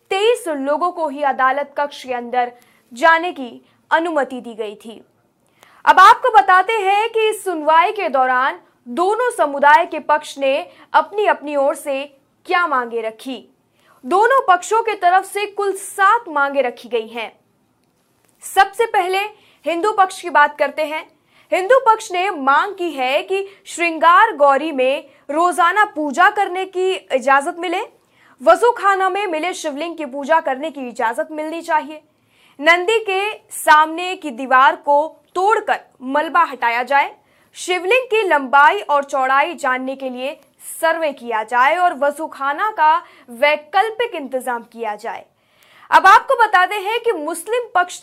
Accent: native